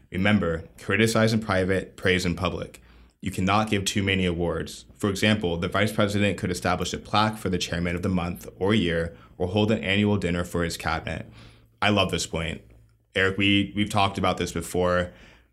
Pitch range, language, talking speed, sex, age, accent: 90-105 Hz, English, 185 wpm, male, 20-39, American